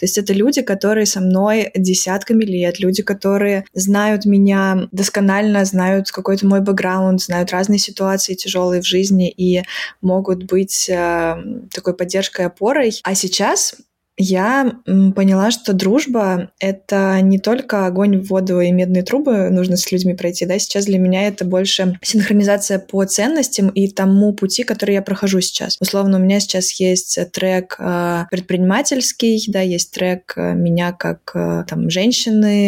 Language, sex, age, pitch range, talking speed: Russian, female, 20-39, 185-205 Hz, 145 wpm